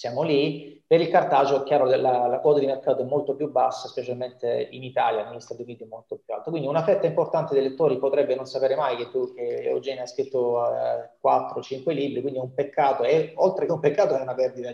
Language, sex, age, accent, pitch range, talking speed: Italian, male, 30-49, native, 130-155 Hz, 230 wpm